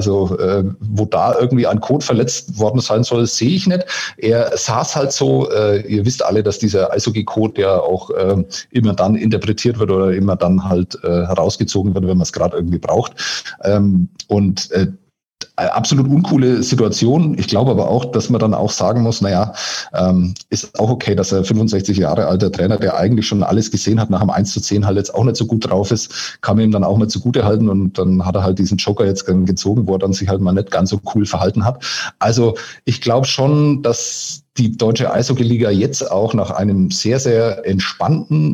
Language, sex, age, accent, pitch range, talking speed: German, male, 40-59, German, 100-120 Hz, 210 wpm